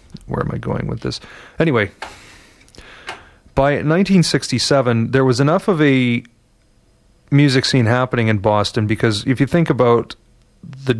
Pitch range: 105-125 Hz